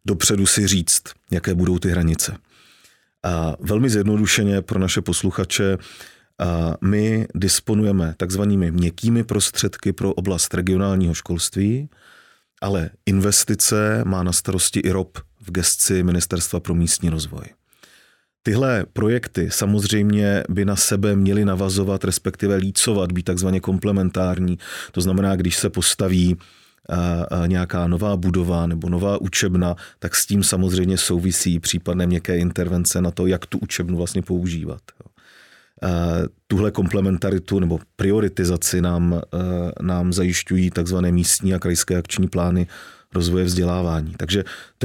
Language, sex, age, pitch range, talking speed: Czech, male, 40-59, 90-100 Hz, 125 wpm